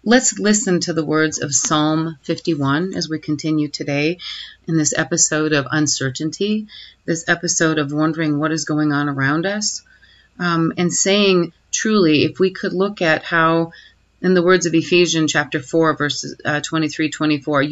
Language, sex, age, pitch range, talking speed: English, female, 40-59, 140-175 Hz, 160 wpm